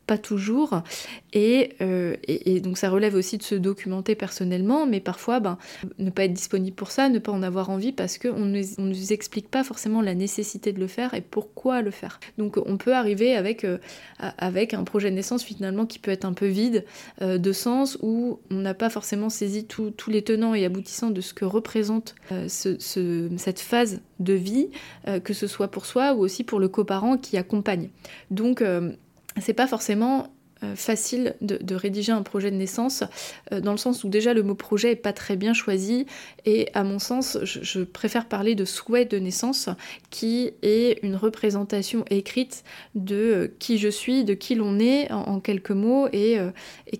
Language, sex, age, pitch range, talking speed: French, female, 20-39, 195-230 Hz, 205 wpm